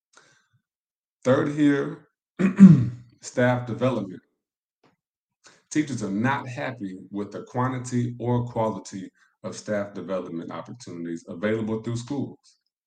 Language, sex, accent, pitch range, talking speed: English, male, American, 100-120 Hz, 95 wpm